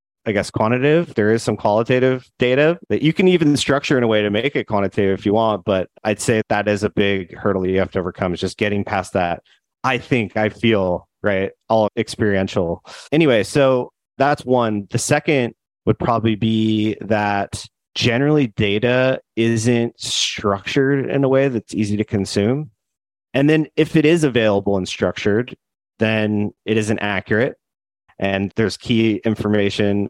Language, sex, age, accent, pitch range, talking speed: English, male, 30-49, American, 100-120 Hz, 165 wpm